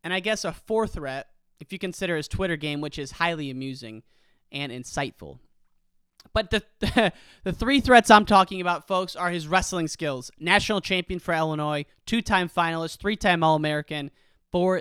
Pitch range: 145-190 Hz